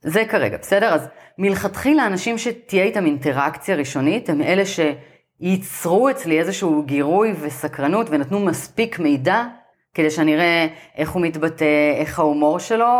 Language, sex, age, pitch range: Hebrew, female, 30-49, 150-200 Hz